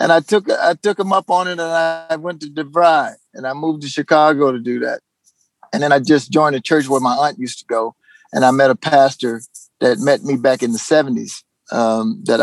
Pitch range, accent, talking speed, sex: 140-190 Hz, American, 235 wpm, male